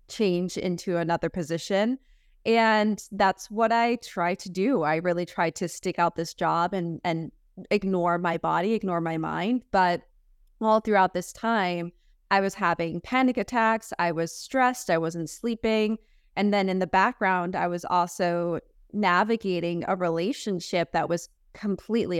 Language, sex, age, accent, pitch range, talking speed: English, female, 20-39, American, 175-220 Hz, 155 wpm